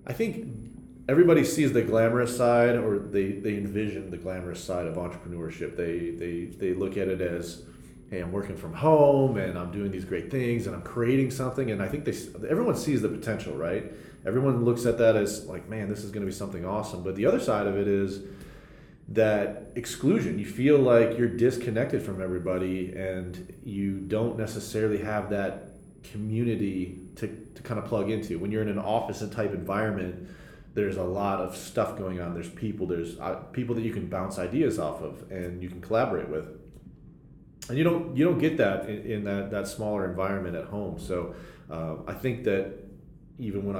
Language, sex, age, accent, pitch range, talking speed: English, male, 30-49, American, 90-115 Hz, 195 wpm